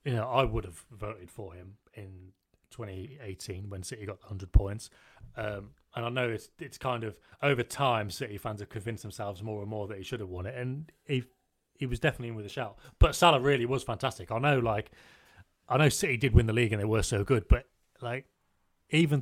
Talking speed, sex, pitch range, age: 220 wpm, male, 100-125 Hz, 30-49